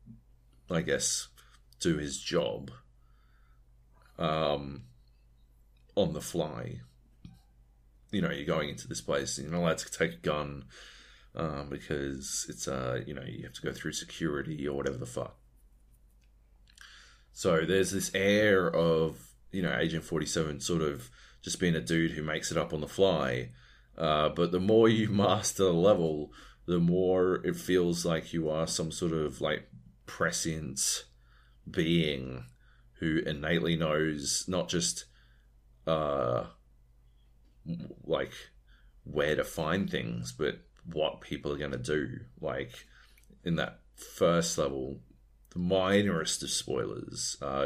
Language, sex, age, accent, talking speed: English, male, 30-49, Australian, 140 wpm